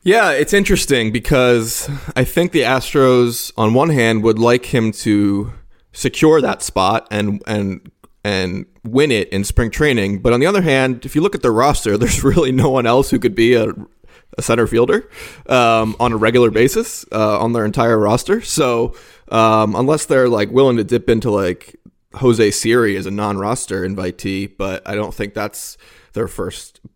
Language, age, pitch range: English, 20-39, 105-125 Hz